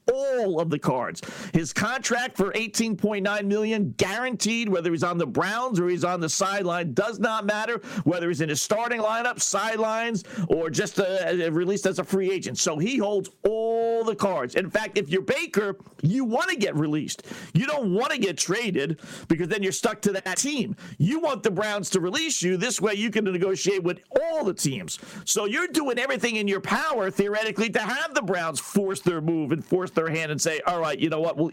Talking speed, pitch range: 205 wpm, 175-225 Hz